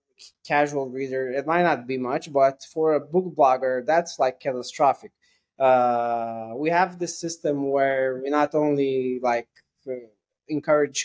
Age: 20-39